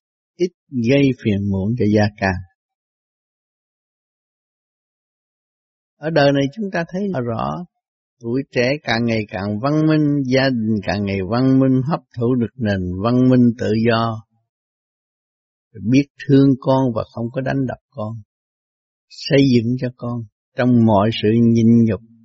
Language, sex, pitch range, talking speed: Vietnamese, male, 115-155 Hz, 145 wpm